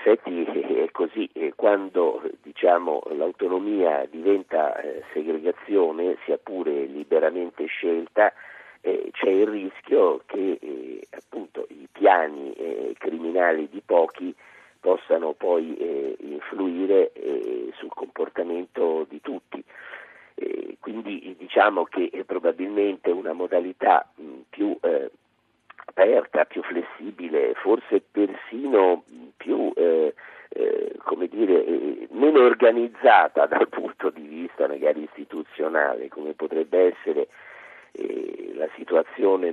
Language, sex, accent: Italian, male, native